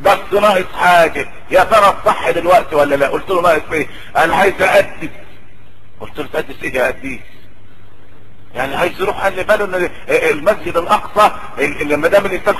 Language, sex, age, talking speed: Arabic, male, 50-69, 155 wpm